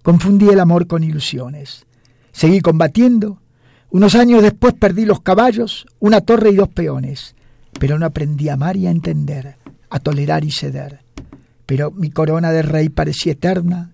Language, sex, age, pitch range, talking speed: Spanish, male, 50-69, 125-175 Hz, 160 wpm